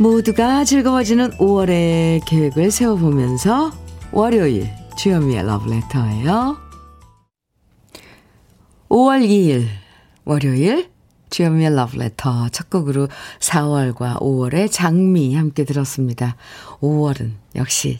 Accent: native